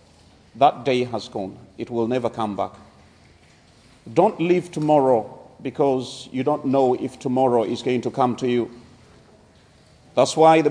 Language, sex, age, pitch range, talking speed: English, male, 40-59, 120-165 Hz, 150 wpm